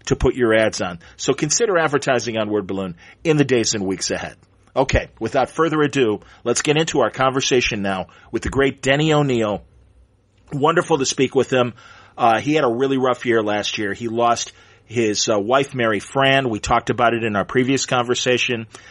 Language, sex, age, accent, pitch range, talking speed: English, male, 40-59, American, 110-135 Hz, 195 wpm